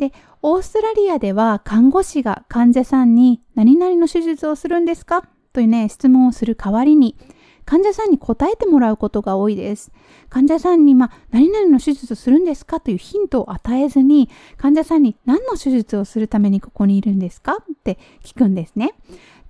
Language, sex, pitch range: Japanese, female, 215-305 Hz